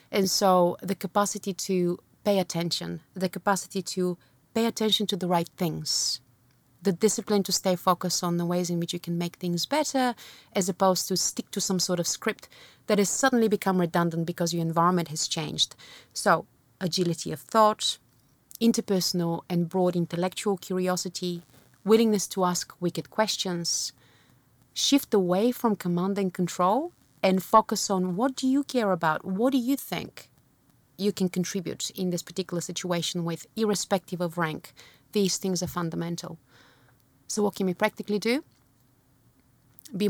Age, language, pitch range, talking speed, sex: 30-49, English, 170-205 Hz, 155 wpm, female